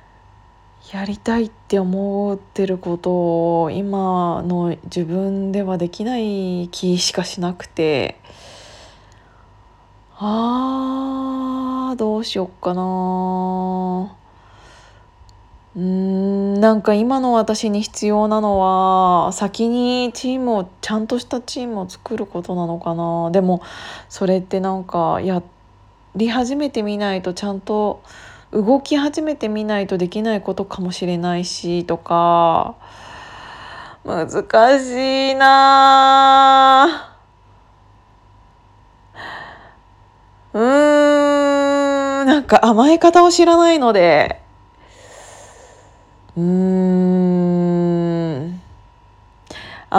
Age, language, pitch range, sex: 20-39, Japanese, 175-230 Hz, female